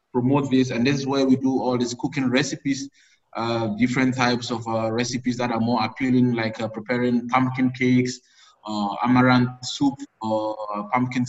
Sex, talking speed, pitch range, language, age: male, 170 wpm, 115-140 Hz, English, 20-39